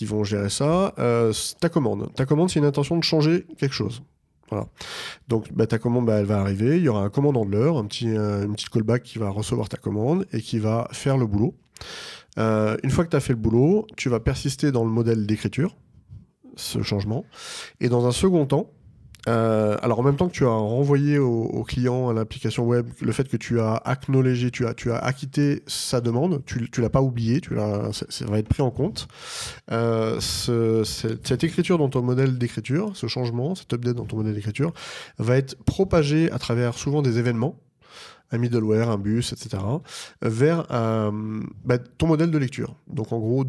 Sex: male